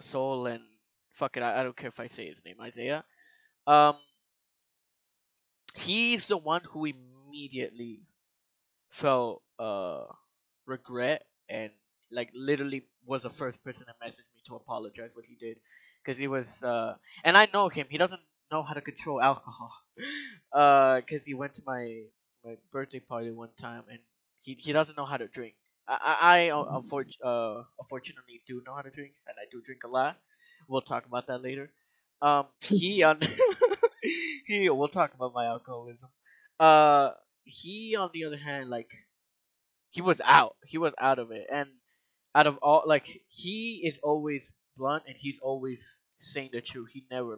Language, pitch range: English, 125-155 Hz